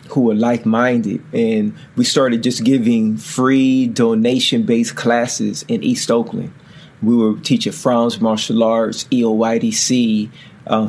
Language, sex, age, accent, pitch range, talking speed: English, male, 30-49, American, 115-150 Hz, 120 wpm